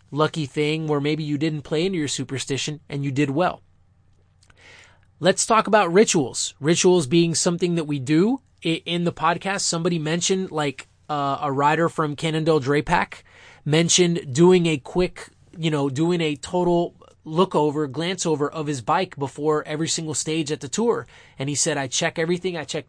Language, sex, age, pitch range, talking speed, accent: English, male, 20-39, 145-175 Hz, 175 wpm, American